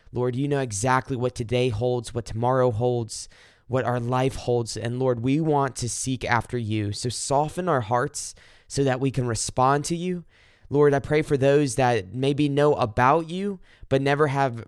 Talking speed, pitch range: 190 wpm, 110-135 Hz